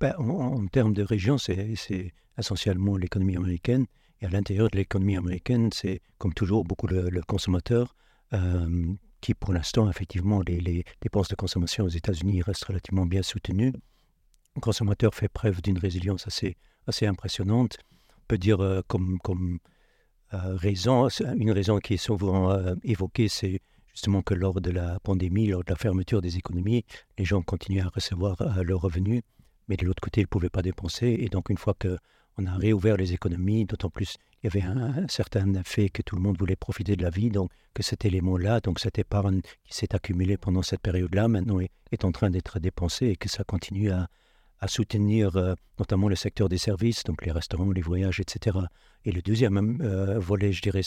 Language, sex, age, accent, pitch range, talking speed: French, male, 60-79, French, 95-110 Hz, 195 wpm